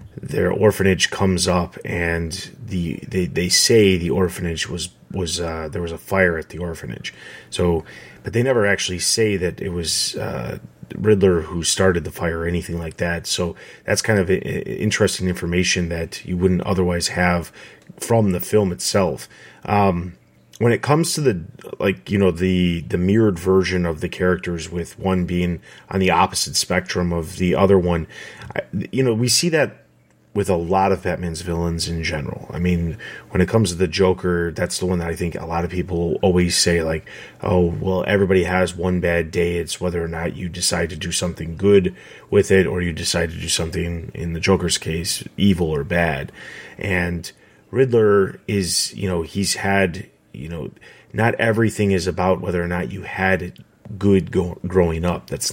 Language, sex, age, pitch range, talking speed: English, male, 30-49, 85-95 Hz, 185 wpm